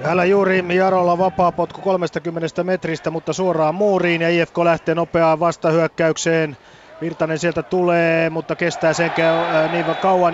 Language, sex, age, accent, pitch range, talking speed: Finnish, male, 30-49, native, 125-160 Hz, 140 wpm